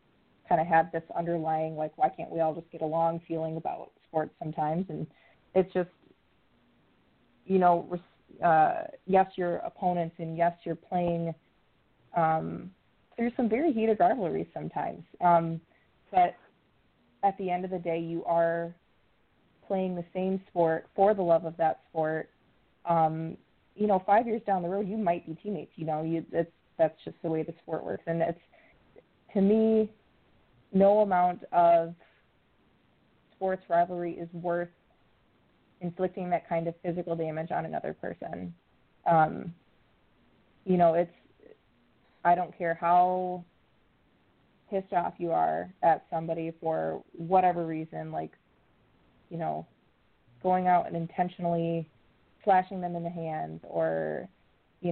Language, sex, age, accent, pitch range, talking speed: English, female, 20-39, American, 165-185 Hz, 140 wpm